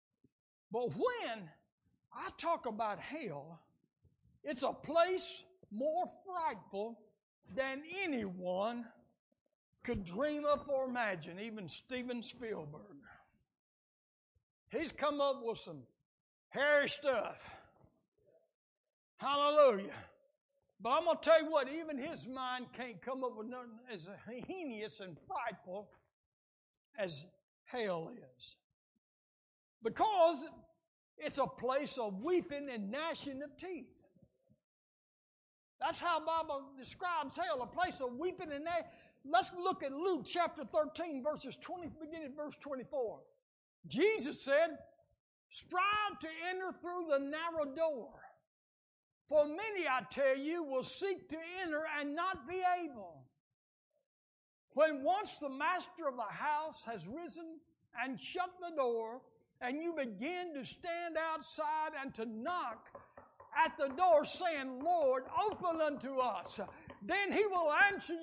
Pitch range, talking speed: 250-335 Hz, 125 wpm